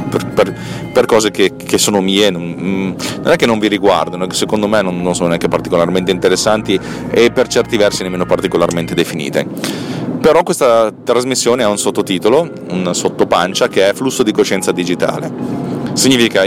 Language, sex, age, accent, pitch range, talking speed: Italian, male, 30-49, native, 90-120 Hz, 155 wpm